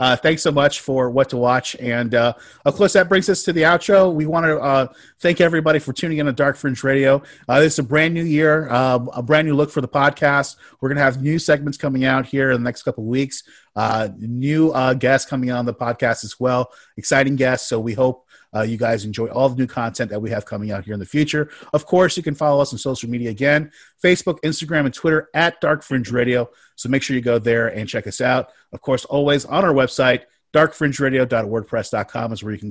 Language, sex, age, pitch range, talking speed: English, male, 30-49, 120-155 Hz, 240 wpm